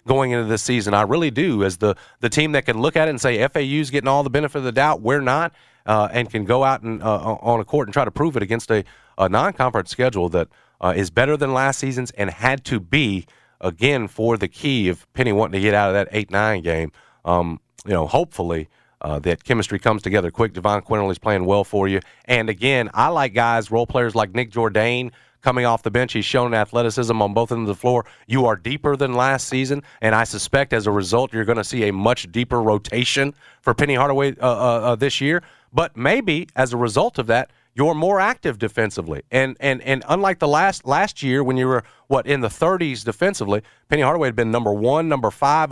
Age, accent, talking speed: 40-59, American, 230 wpm